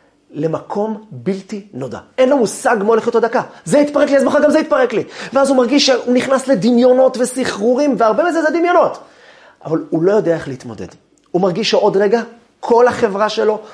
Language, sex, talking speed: Hebrew, male, 190 wpm